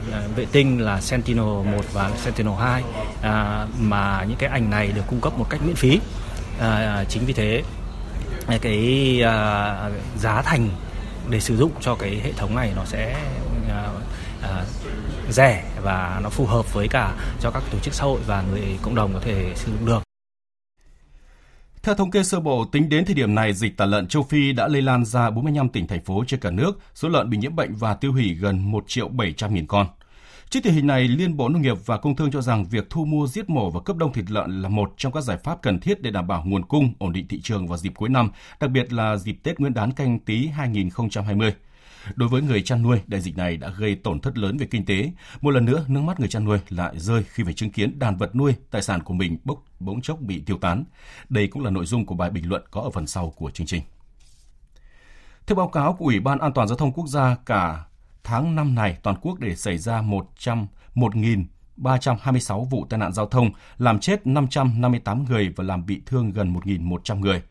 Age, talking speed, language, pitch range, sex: 20-39, 220 wpm, Vietnamese, 100-130 Hz, male